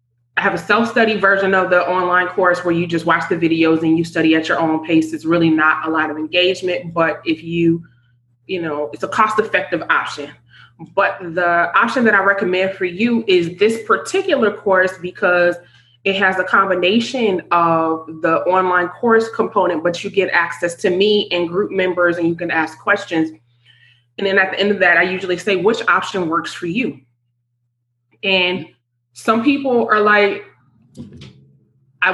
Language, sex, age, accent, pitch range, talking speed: English, female, 20-39, American, 165-205 Hz, 175 wpm